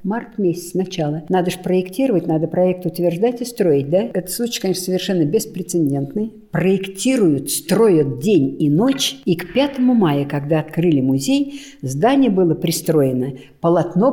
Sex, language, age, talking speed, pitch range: female, Russian, 60-79, 140 wpm, 150-195 Hz